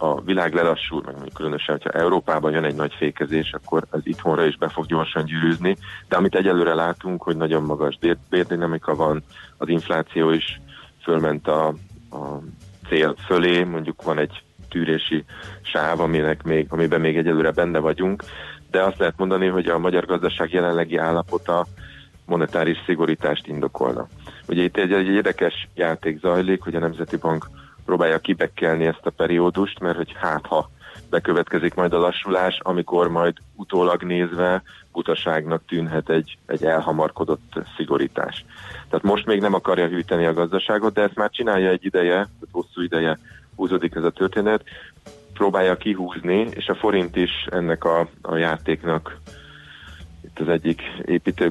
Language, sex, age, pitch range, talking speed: Hungarian, male, 30-49, 80-90 Hz, 150 wpm